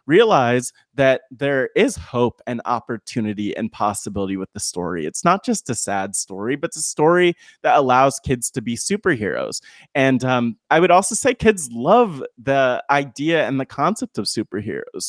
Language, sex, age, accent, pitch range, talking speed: English, male, 20-39, American, 110-140 Hz, 170 wpm